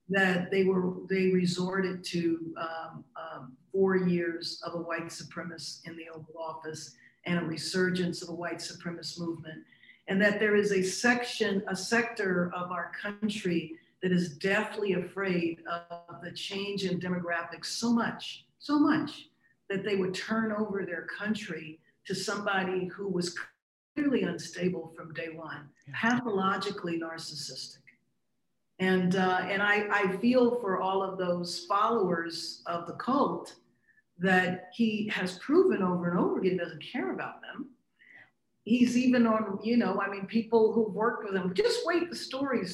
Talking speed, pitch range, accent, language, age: 155 wpm, 170-210 Hz, American, English, 50-69